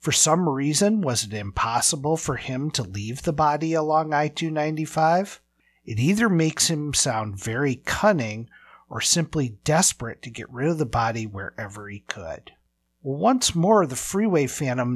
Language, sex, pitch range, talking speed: English, male, 115-160 Hz, 155 wpm